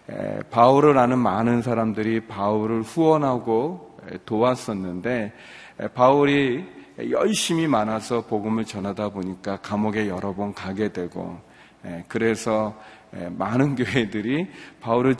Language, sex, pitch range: Korean, male, 105-125 Hz